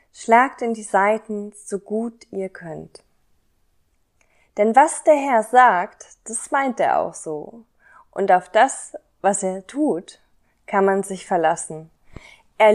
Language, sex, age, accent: German, female, 20-39, German